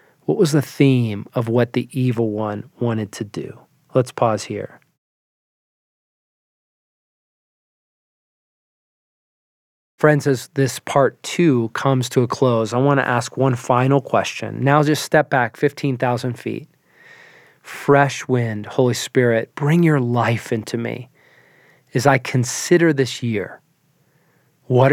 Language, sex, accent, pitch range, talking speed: English, male, American, 120-150 Hz, 125 wpm